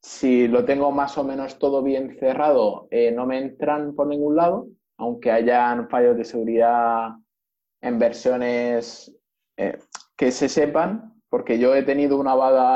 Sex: male